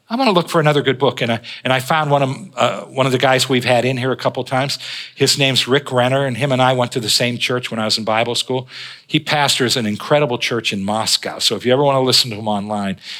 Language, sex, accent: English, male, American